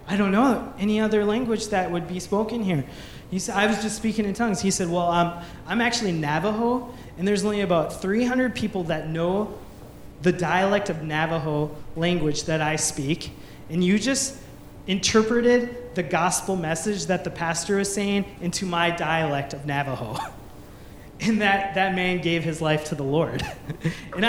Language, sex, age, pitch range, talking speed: English, male, 20-39, 170-220 Hz, 170 wpm